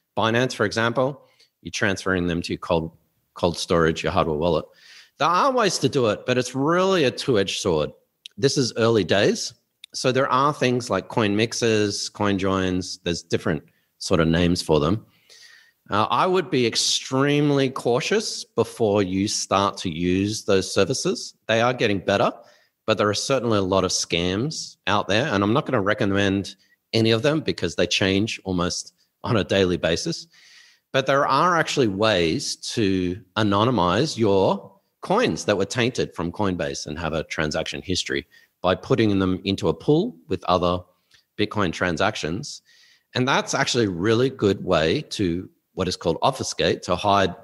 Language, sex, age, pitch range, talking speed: English, male, 40-59, 90-125 Hz, 170 wpm